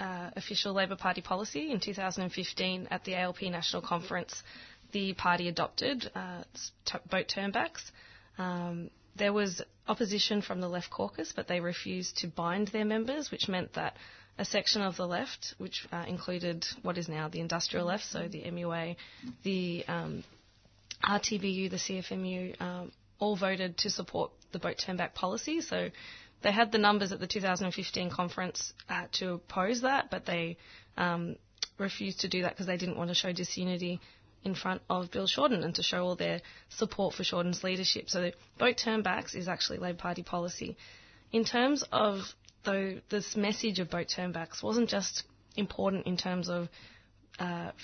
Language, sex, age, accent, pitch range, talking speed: English, female, 20-39, Australian, 175-205 Hz, 165 wpm